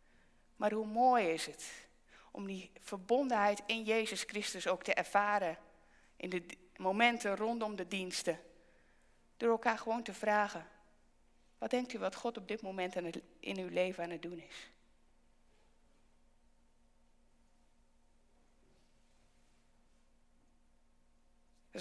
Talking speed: 115 wpm